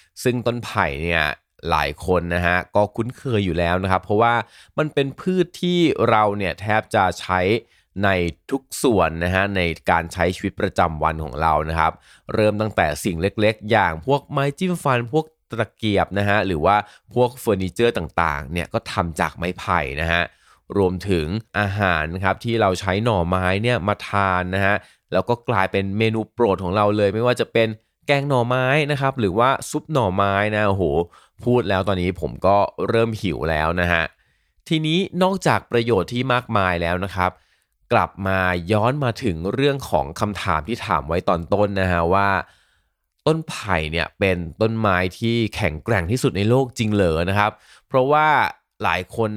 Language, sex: Thai, male